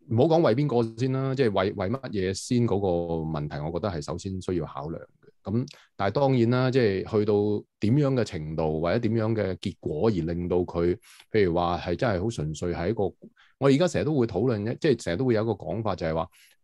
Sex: male